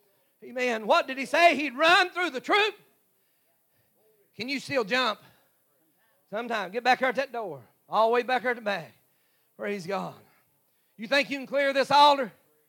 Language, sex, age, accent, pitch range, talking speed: English, male, 40-59, American, 230-320 Hz, 170 wpm